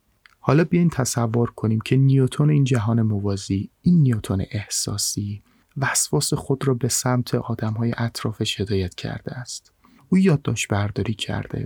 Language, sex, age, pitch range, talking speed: Persian, male, 30-49, 105-130 Hz, 135 wpm